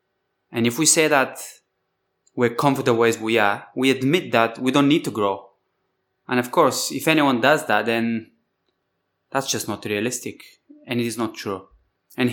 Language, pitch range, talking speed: English, 110-150 Hz, 175 wpm